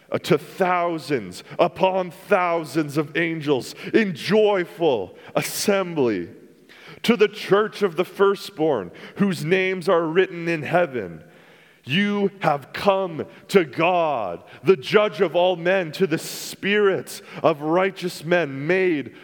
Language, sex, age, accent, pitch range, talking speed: English, male, 30-49, American, 120-180 Hz, 120 wpm